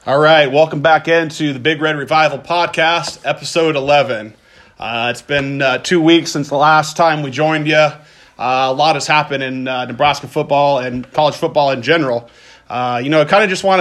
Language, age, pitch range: English, 30-49, 130-155 Hz